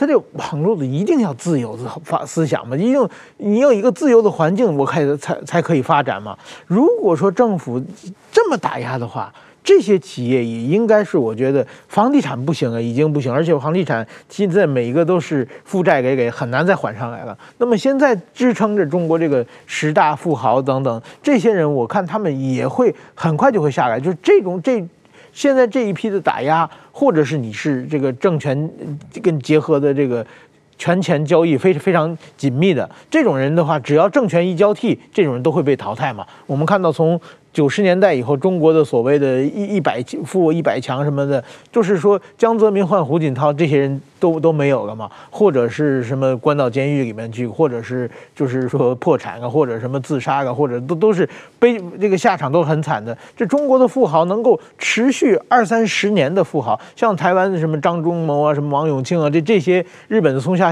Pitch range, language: 140-200 Hz, Chinese